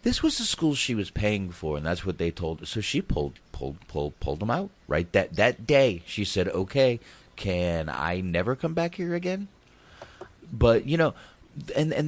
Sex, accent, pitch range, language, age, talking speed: male, American, 80-105 Hz, English, 30-49, 205 wpm